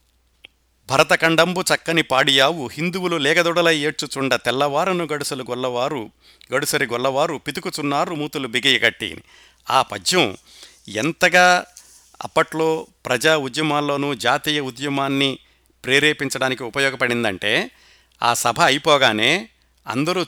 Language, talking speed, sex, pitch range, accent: Telugu, 90 wpm, male, 120-155 Hz, native